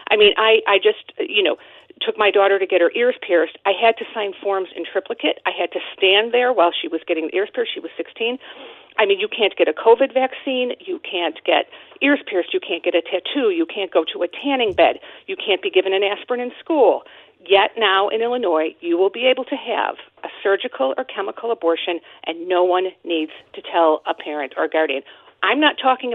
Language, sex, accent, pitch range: English, female, American, 180-260 Hz